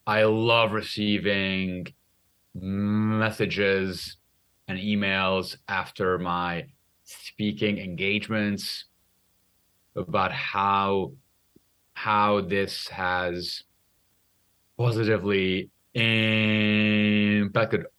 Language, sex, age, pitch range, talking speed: English, male, 30-49, 90-110 Hz, 55 wpm